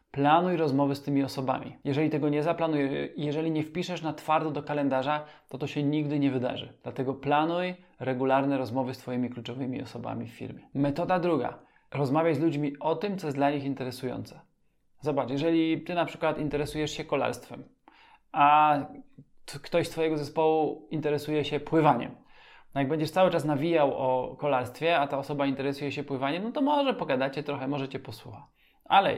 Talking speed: 175 wpm